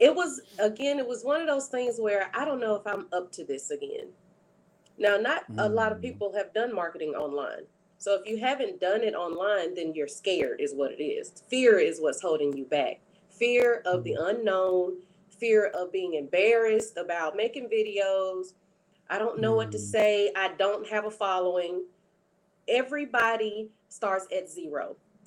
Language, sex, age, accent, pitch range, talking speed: English, female, 30-49, American, 195-265 Hz, 180 wpm